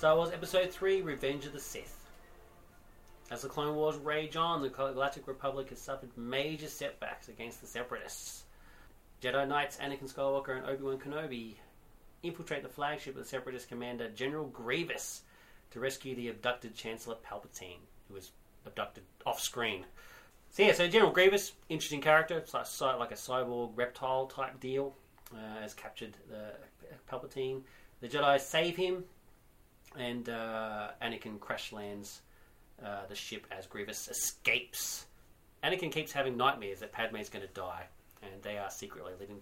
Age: 30-49